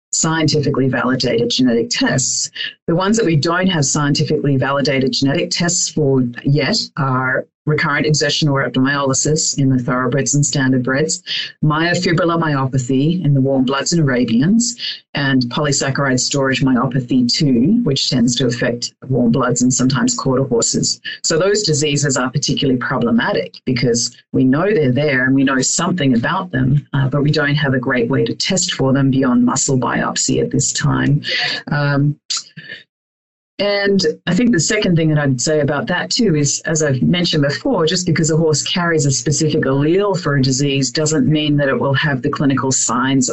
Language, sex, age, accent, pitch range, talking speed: English, female, 40-59, Australian, 130-155 Hz, 170 wpm